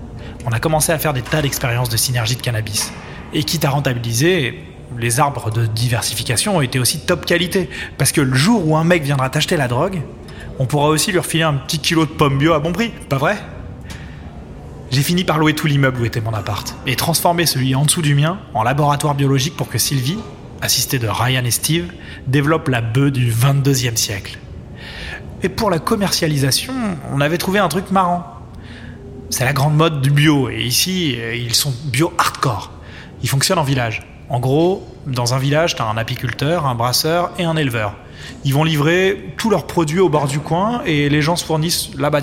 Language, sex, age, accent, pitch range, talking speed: French, male, 20-39, French, 125-165 Hz, 205 wpm